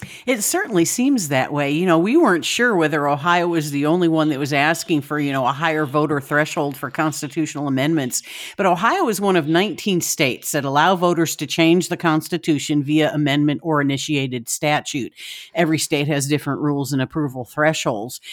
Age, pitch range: 50-69, 150-175 Hz